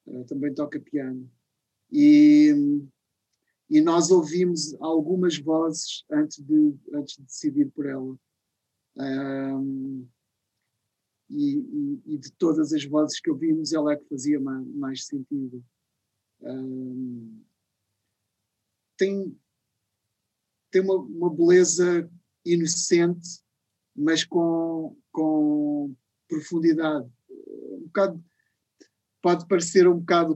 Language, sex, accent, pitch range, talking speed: Portuguese, male, Portuguese, 135-185 Hz, 90 wpm